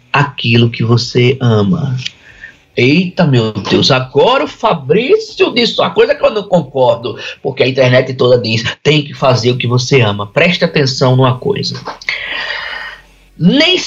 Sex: male